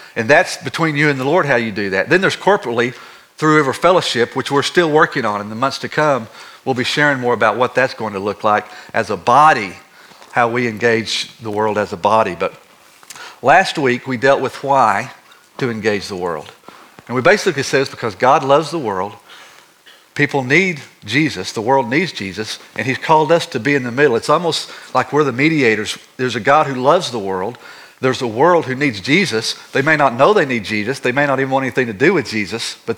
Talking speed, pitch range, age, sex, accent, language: 225 wpm, 115-145 Hz, 50-69, male, American, English